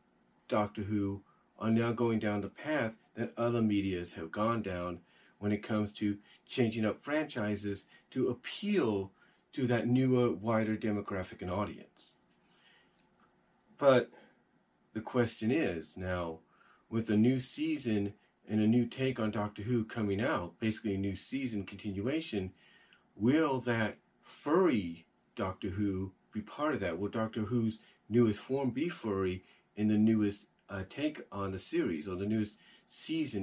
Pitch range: 100-125 Hz